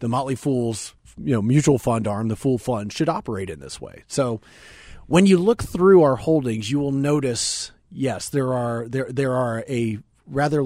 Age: 40-59